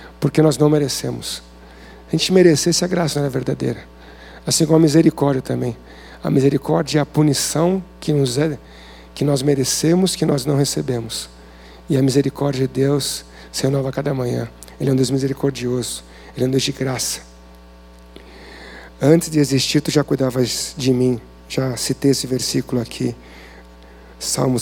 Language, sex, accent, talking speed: Portuguese, male, Brazilian, 165 wpm